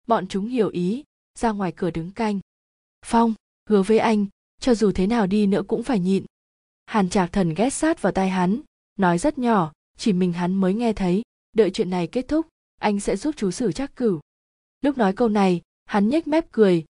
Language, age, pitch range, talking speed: Vietnamese, 20-39, 185-230 Hz, 210 wpm